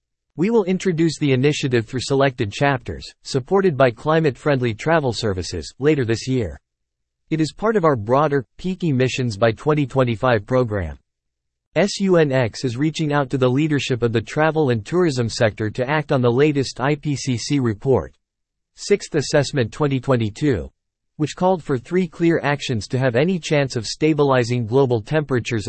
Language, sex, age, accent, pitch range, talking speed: English, male, 50-69, American, 115-155 Hz, 150 wpm